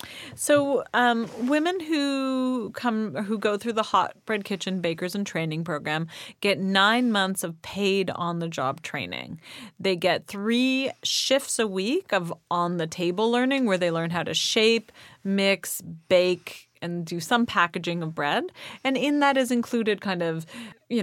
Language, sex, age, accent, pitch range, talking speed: English, female, 30-49, American, 185-245 Hz, 150 wpm